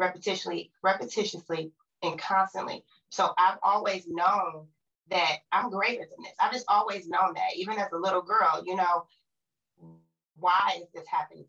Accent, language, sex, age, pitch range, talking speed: American, English, female, 30-49, 170-200 Hz, 150 wpm